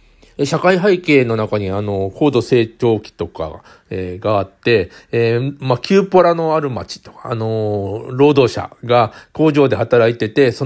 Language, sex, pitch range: Japanese, male, 105-145 Hz